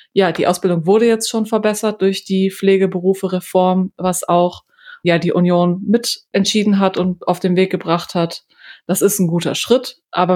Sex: female